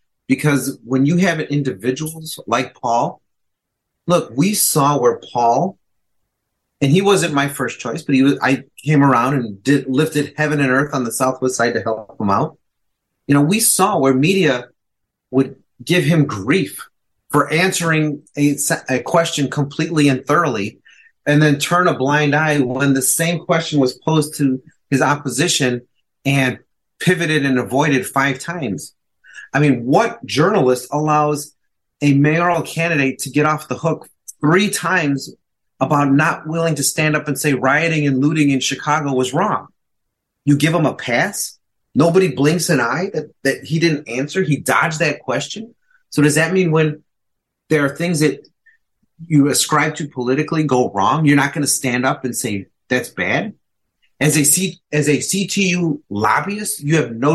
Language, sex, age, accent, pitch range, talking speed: English, male, 30-49, American, 135-165 Hz, 165 wpm